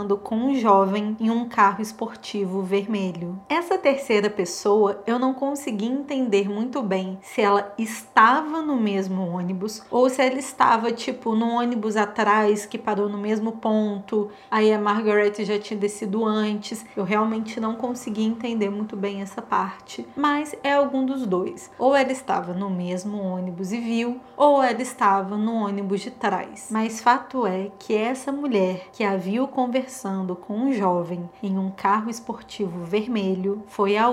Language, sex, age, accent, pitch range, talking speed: Portuguese, female, 20-39, Brazilian, 200-245 Hz, 160 wpm